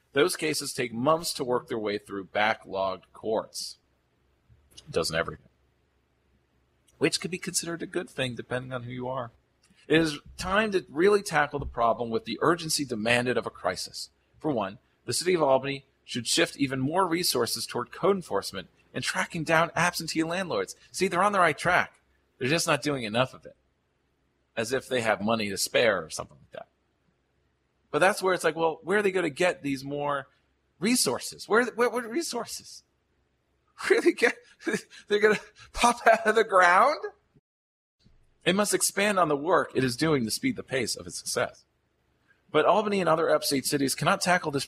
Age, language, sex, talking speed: 40-59, English, male, 185 wpm